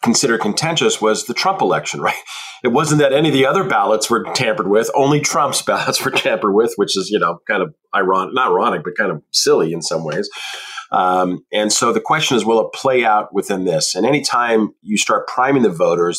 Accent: American